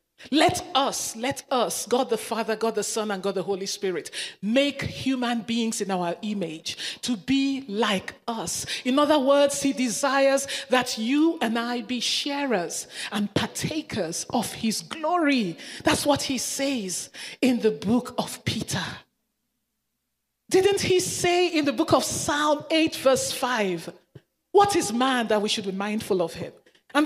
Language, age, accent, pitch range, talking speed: English, 40-59, Nigerian, 205-275 Hz, 160 wpm